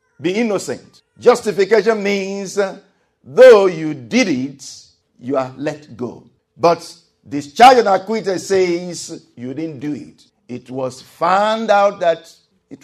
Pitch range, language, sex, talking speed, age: 135-195 Hz, English, male, 130 wpm, 50-69